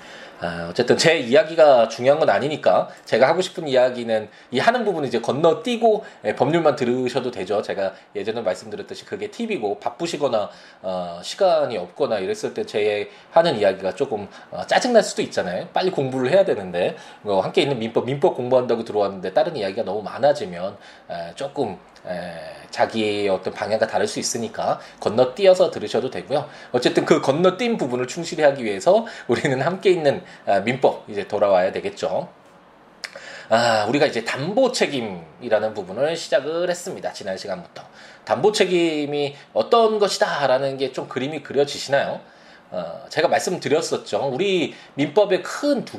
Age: 20-39